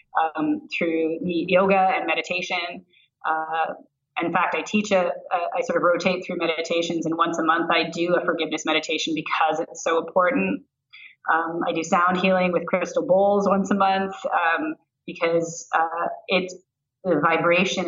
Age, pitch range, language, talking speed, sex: 30-49, 160-190 Hz, English, 165 wpm, female